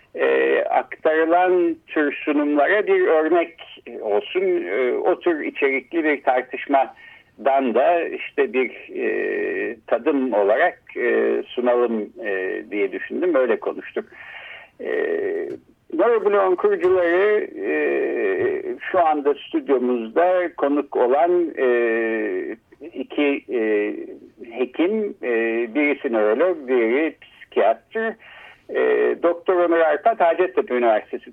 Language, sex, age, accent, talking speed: Turkish, male, 60-79, native, 95 wpm